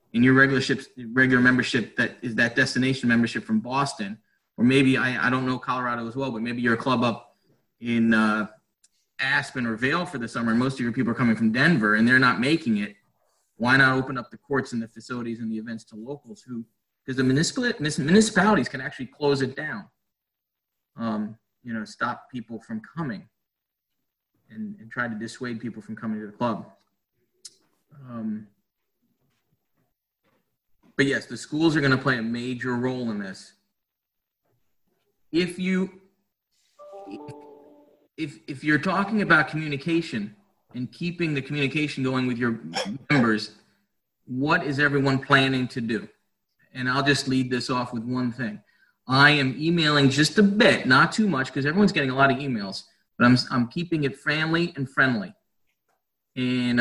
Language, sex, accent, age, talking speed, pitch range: English, male, American, 30-49, 170 wpm, 115-145 Hz